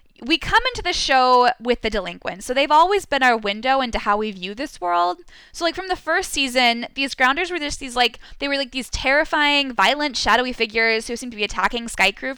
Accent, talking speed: American, 230 wpm